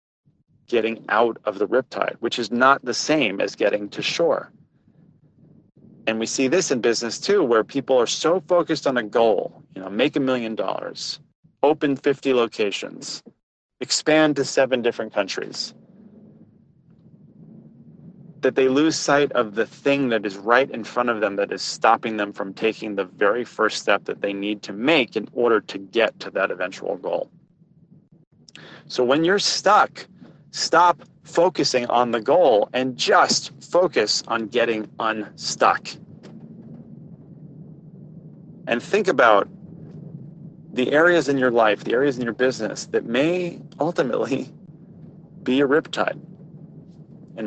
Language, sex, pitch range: English, male, 115-165 Hz